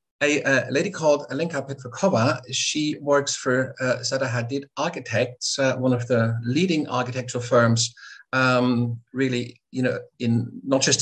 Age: 50-69